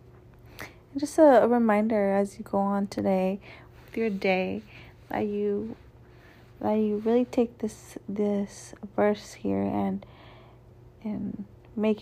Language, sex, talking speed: English, female, 120 wpm